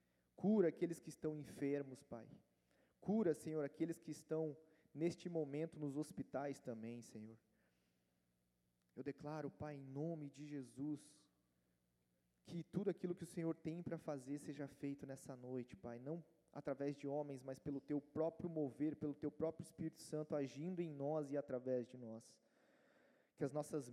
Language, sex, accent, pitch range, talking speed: Portuguese, male, Brazilian, 130-160 Hz, 155 wpm